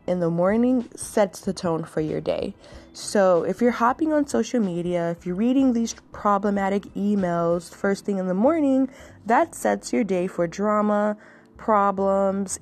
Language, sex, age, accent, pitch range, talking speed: English, female, 20-39, American, 170-220 Hz, 160 wpm